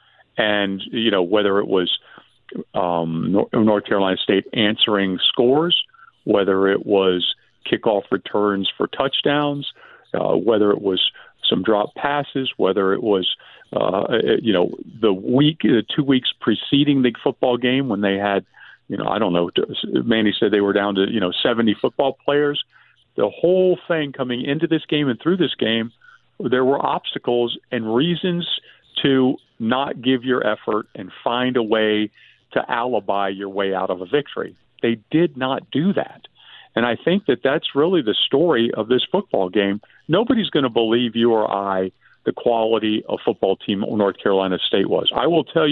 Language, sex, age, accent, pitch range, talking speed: English, male, 50-69, American, 100-145 Hz, 170 wpm